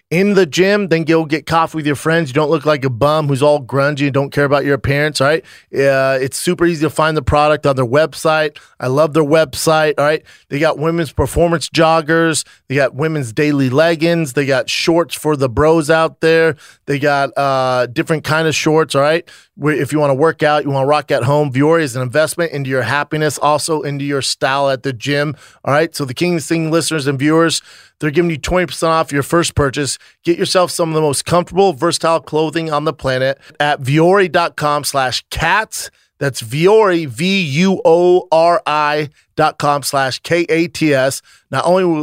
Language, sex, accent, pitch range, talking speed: English, male, American, 140-165 Hz, 200 wpm